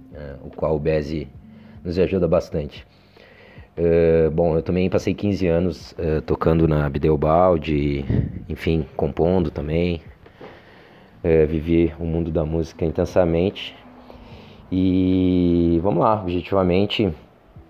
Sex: male